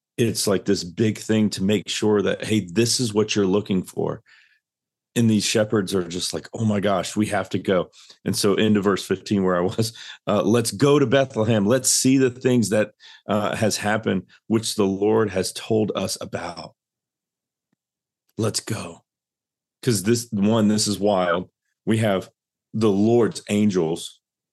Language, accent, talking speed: English, American, 170 wpm